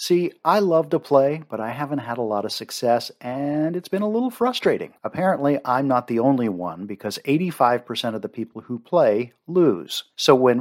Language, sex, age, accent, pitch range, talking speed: English, male, 50-69, American, 120-165 Hz, 200 wpm